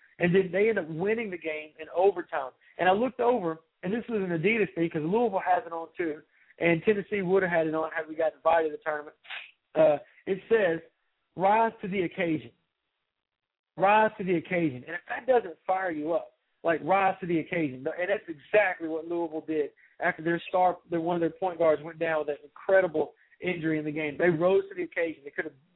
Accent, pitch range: American, 160-195 Hz